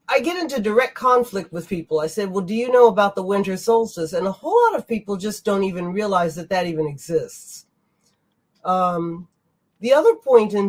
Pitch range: 170-230 Hz